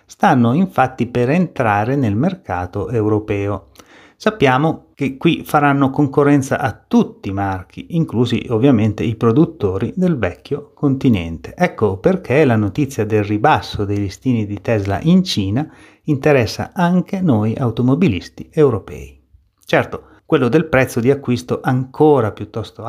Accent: native